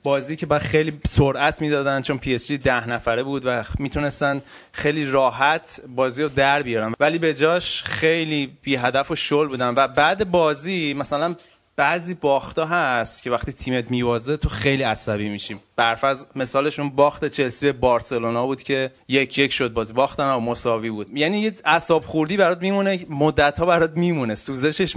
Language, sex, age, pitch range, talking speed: Persian, male, 20-39, 120-150 Hz, 170 wpm